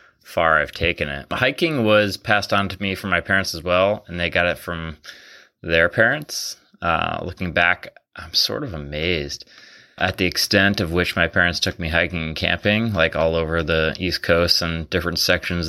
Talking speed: 190 wpm